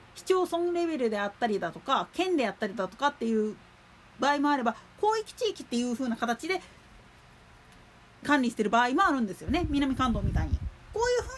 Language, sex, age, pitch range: Japanese, female, 40-59, 225-345 Hz